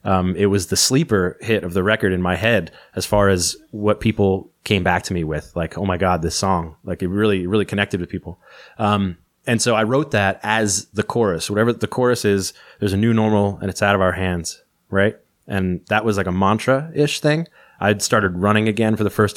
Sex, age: male, 20-39